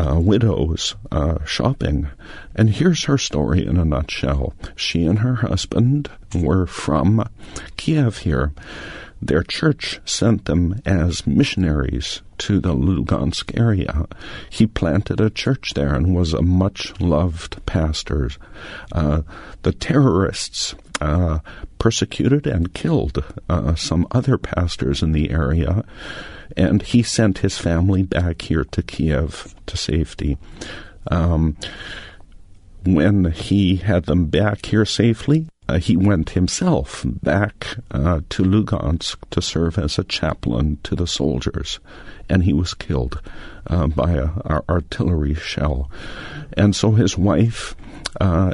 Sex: male